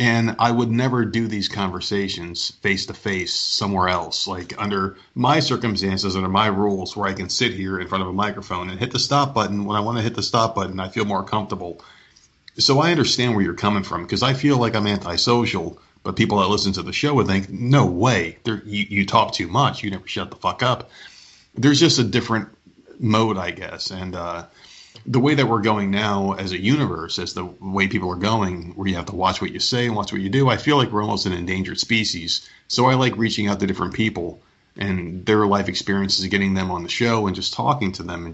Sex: male